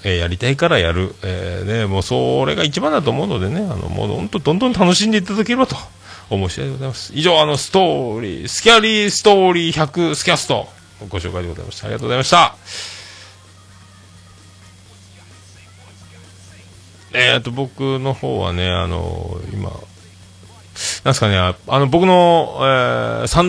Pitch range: 90-120 Hz